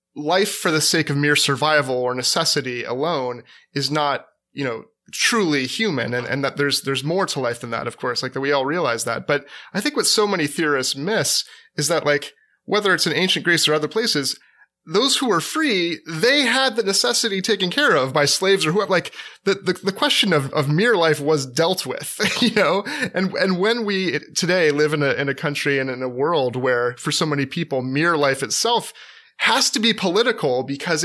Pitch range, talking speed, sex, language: 135-180 Hz, 215 wpm, male, English